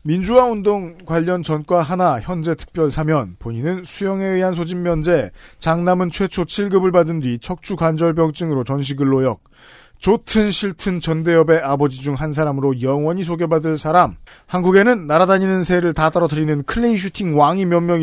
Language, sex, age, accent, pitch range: Korean, male, 40-59, native, 150-185 Hz